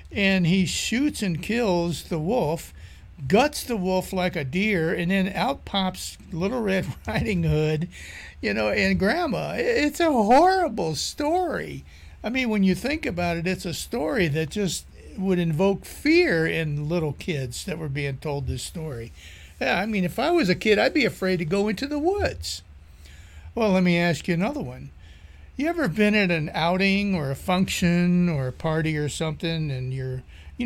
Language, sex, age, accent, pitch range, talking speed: English, male, 60-79, American, 150-195 Hz, 180 wpm